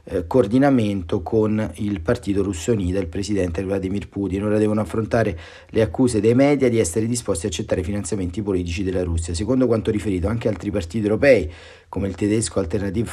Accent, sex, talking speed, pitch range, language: native, male, 175 wpm, 95-120 Hz, Italian